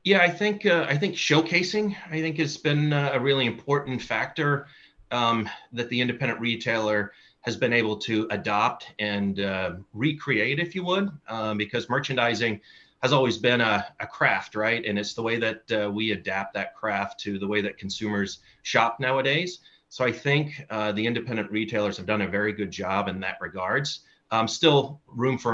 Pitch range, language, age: 100-125 Hz, English, 30-49